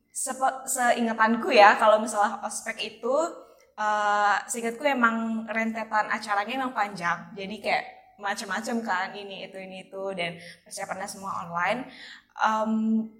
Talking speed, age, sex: 120 wpm, 10-29, female